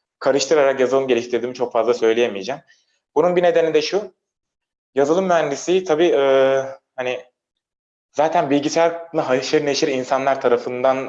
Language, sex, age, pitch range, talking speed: Turkish, male, 30-49, 105-145 Hz, 120 wpm